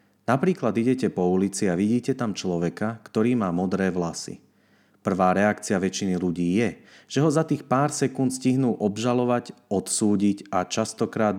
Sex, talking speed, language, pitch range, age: male, 150 wpm, Slovak, 90-120 Hz, 30-49